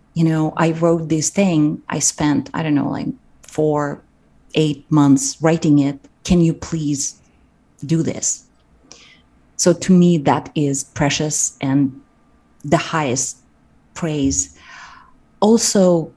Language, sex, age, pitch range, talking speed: English, female, 30-49, 150-185 Hz, 120 wpm